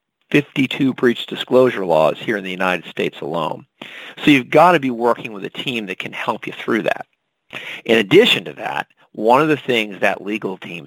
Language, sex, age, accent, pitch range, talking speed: English, male, 50-69, American, 115-155 Hz, 200 wpm